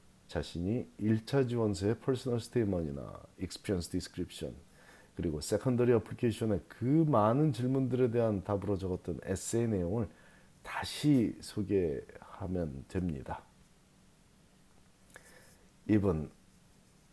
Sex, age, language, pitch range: male, 40-59, Korean, 95-135 Hz